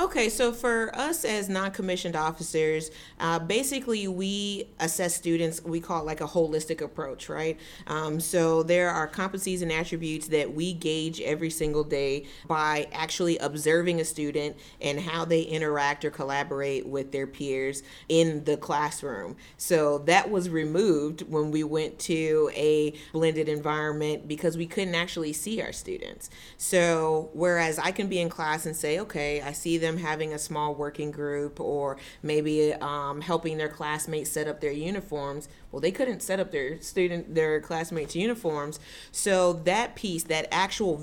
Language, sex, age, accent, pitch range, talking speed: English, female, 40-59, American, 150-170 Hz, 160 wpm